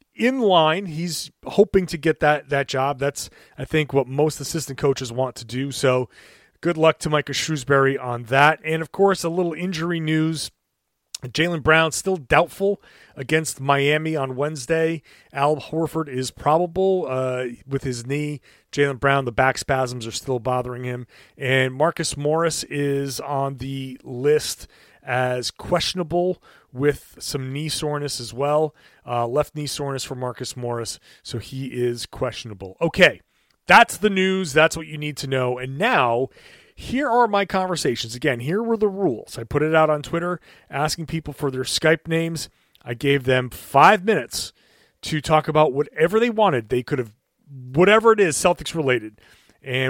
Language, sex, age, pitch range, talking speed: English, male, 30-49, 130-165 Hz, 165 wpm